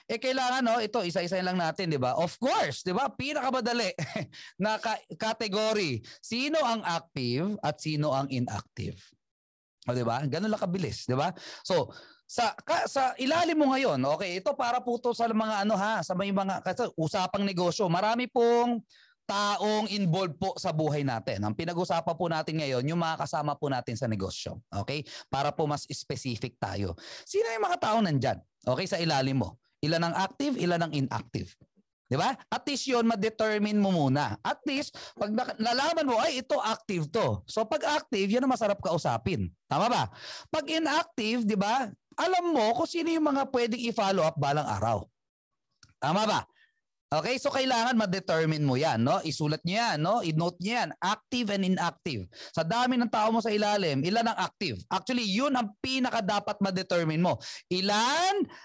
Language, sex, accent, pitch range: Filipino, male, native, 155-240 Hz